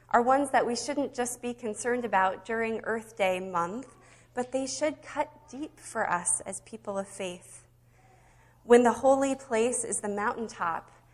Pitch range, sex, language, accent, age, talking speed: 180-230 Hz, female, English, American, 20-39, 165 wpm